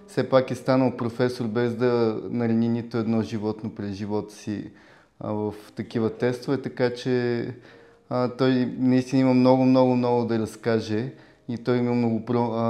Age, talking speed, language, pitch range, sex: 20-39, 150 wpm, Bulgarian, 115-125 Hz, male